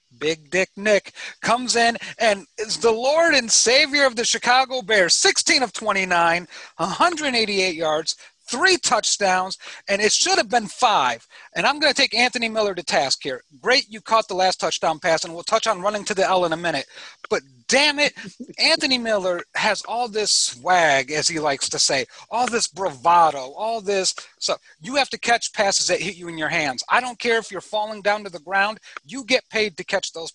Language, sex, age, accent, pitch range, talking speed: English, male, 40-59, American, 180-235 Hz, 210 wpm